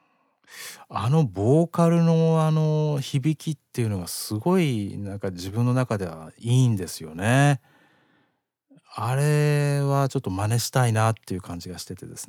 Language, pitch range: Japanese, 95-130 Hz